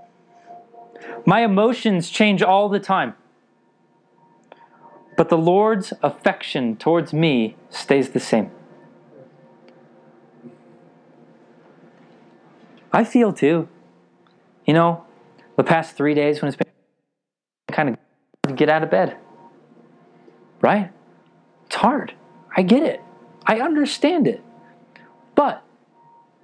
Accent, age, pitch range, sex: American, 20-39, 140-200 Hz, male